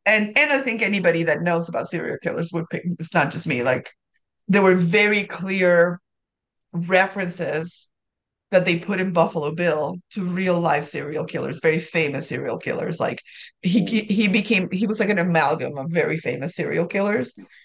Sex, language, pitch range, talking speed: female, English, 165-195 Hz, 175 wpm